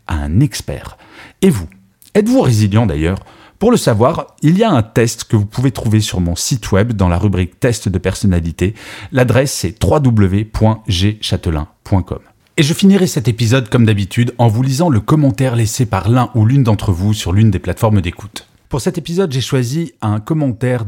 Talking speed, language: 185 wpm, French